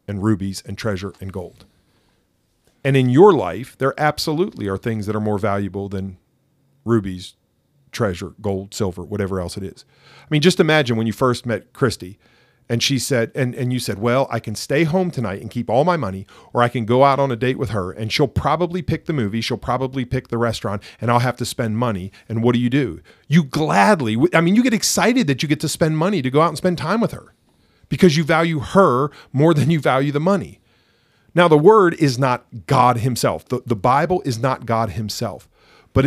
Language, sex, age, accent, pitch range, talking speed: English, male, 40-59, American, 110-150 Hz, 220 wpm